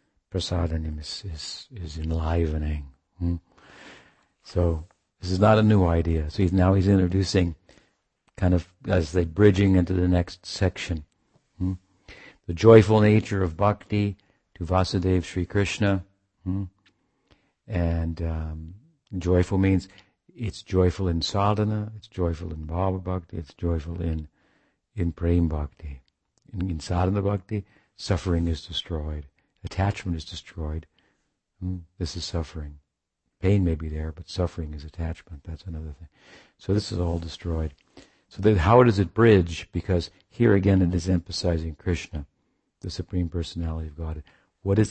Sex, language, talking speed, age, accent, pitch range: male, English, 140 wpm, 60-79, American, 80-95 Hz